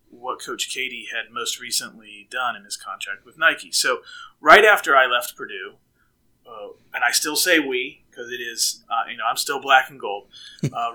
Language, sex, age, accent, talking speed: English, male, 30-49, American, 195 wpm